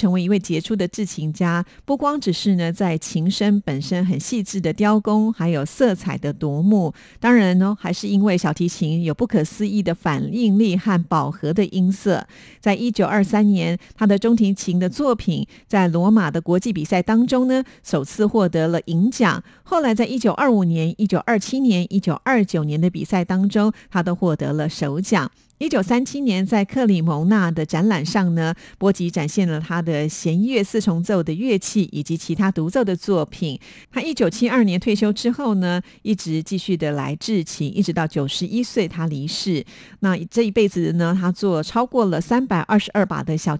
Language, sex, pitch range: Chinese, female, 170-215 Hz